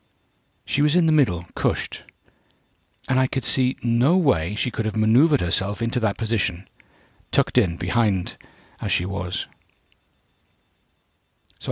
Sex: male